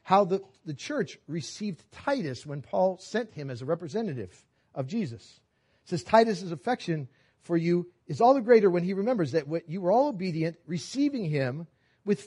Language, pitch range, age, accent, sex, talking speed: English, 135-200 Hz, 40-59, American, male, 175 wpm